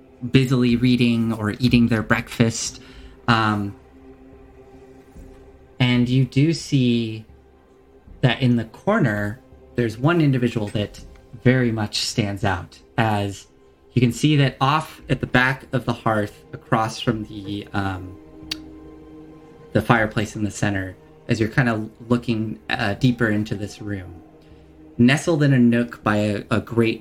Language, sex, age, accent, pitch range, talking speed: English, male, 20-39, American, 100-125 Hz, 140 wpm